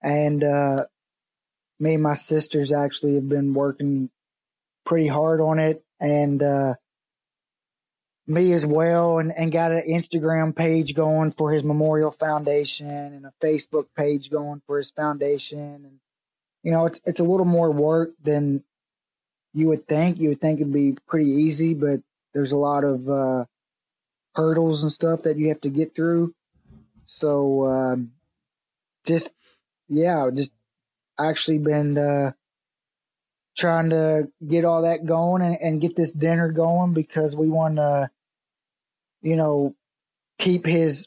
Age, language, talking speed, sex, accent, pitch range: 20-39, English, 145 wpm, male, American, 145-160 Hz